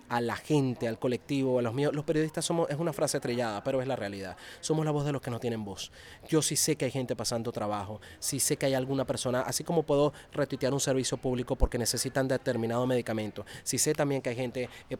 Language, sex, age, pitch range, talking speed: Spanish, male, 30-49, 125-145 Hz, 240 wpm